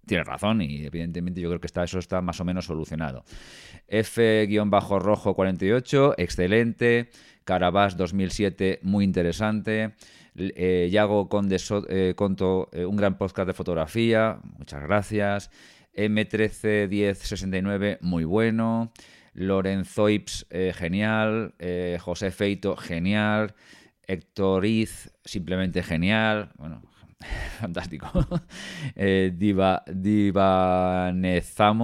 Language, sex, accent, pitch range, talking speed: Spanish, male, Spanish, 90-105 Hz, 95 wpm